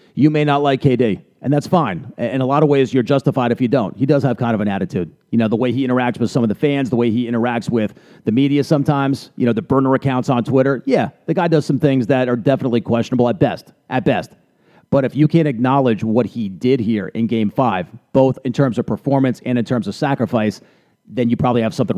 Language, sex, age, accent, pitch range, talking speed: English, male, 40-59, American, 125-150 Hz, 250 wpm